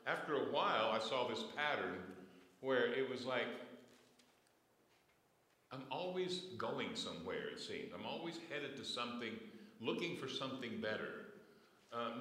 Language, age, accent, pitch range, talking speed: English, 60-79, American, 115-140 Hz, 135 wpm